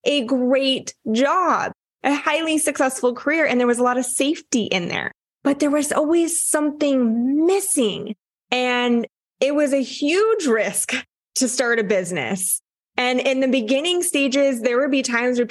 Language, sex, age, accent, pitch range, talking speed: English, female, 20-39, American, 215-270 Hz, 165 wpm